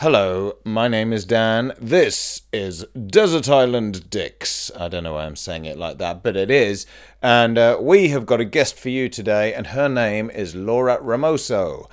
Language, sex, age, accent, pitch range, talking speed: English, male, 30-49, British, 95-120 Hz, 190 wpm